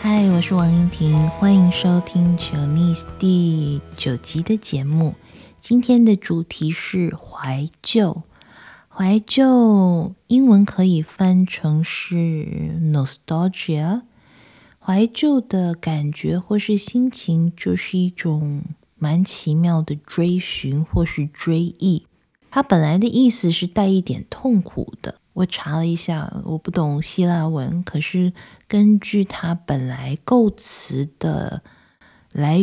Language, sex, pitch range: Chinese, female, 160-200 Hz